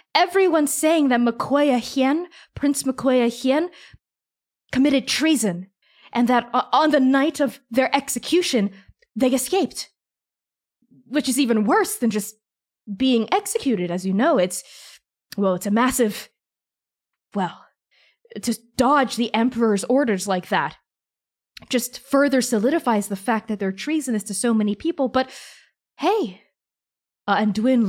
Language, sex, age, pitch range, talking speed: English, female, 20-39, 225-320 Hz, 130 wpm